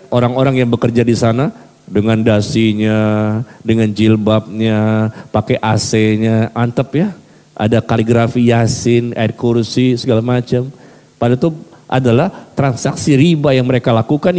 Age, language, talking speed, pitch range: 40-59, Indonesian, 115 wpm, 120-155 Hz